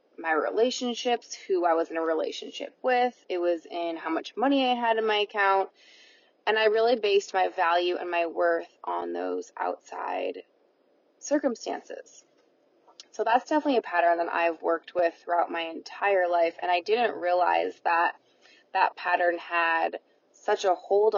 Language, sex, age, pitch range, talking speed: English, female, 20-39, 170-220 Hz, 160 wpm